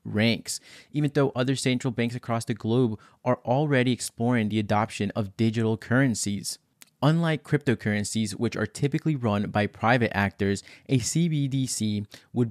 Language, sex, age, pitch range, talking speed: English, male, 20-39, 110-130 Hz, 140 wpm